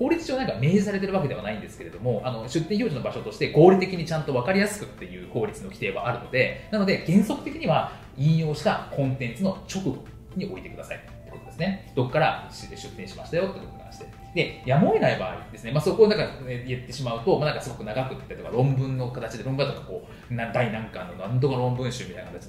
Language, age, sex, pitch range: Japanese, 20-39, male, 125-200 Hz